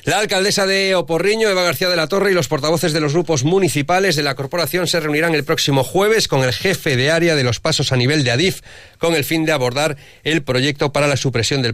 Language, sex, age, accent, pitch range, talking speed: Spanish, male, 40-59, Spanish, 110-150 Hz, 240 wpm